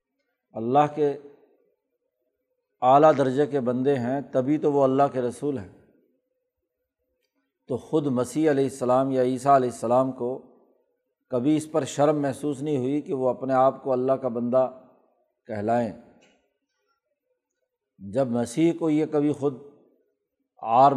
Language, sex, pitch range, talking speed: Urdu, male, 130-155 Hz, 135 wpm